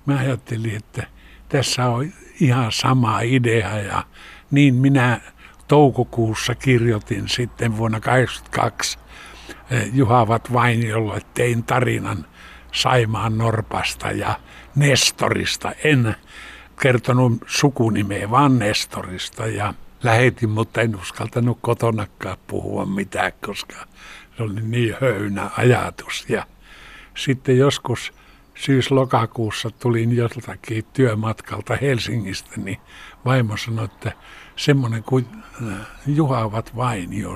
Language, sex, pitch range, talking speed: Finnish, male, 105-125 Hz, 100 wpm